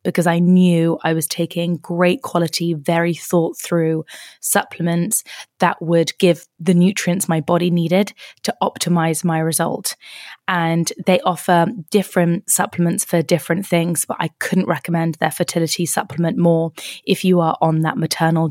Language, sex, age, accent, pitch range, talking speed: English, female, 20-39, British, 165-180 Hz, 150 wpm